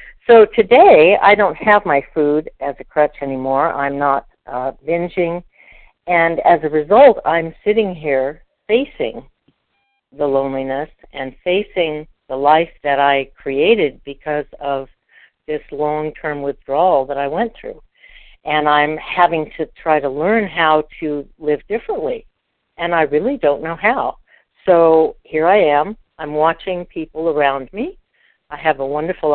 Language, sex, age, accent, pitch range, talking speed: English, female, 60-79, American, 150-200 Hz, 145 wpm